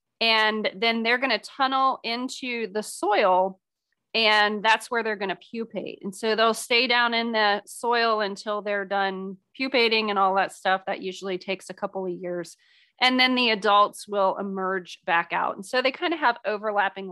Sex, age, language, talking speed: female, 30-49, English, 190 wpm